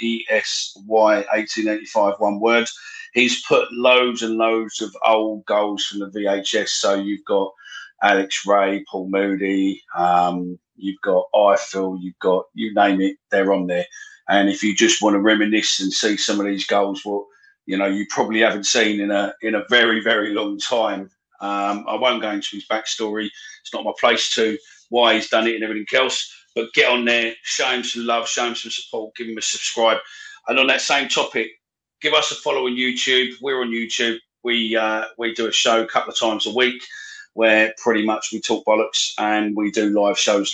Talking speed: 205 wpm